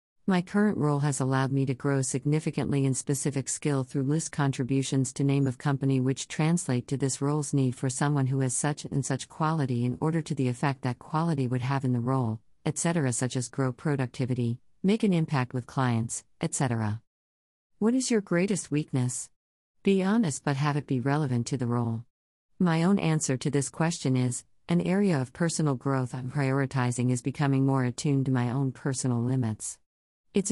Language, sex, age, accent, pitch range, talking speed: English, female, 50-69, American, 125-150 Hz, 185 wpm